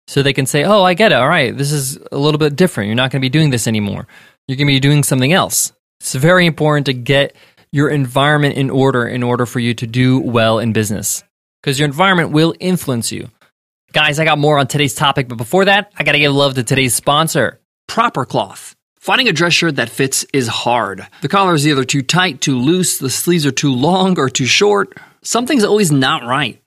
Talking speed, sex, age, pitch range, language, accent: 230 wpm, male, 20-39, 135-185 Hz, English, American